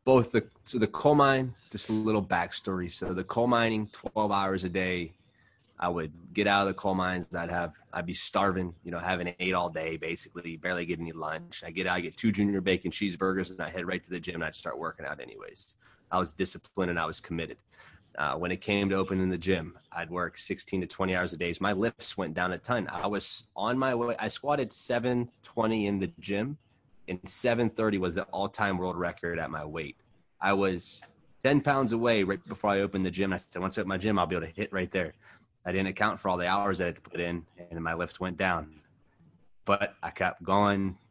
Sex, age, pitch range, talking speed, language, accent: male, 20-39, 90-105 Hz, 240 wpm, English, American